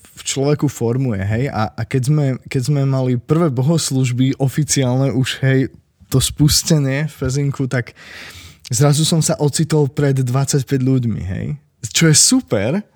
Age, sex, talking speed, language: 20-39, male, 150 wpm, Slovak